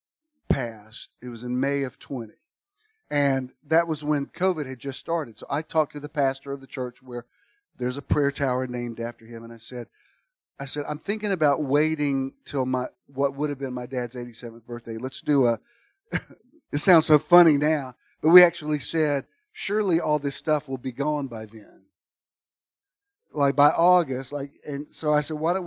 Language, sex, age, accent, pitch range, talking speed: English, male, 50-69, American, 135-180 Hz, 190 wpm